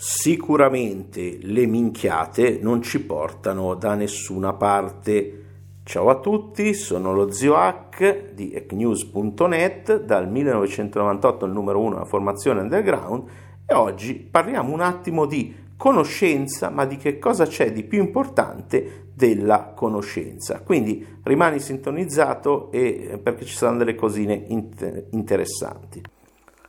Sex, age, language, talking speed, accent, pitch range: male, 50-69, Italian, 120 wpm, native, 105-145 Hz